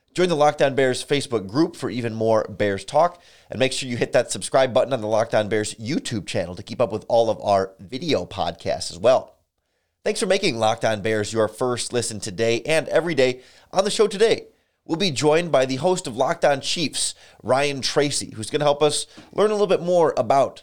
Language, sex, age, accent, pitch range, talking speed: English, male, 30-49, American, 110-150 Hz, 215 wpm